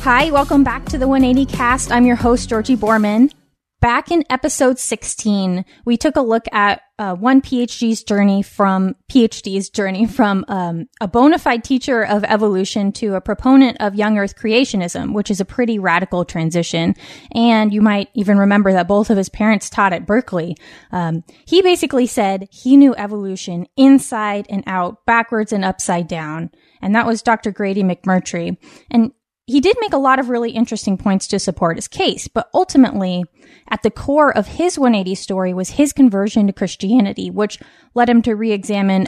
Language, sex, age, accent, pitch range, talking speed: English, female, 20-39, American, 195-245 Hz, 175 wpm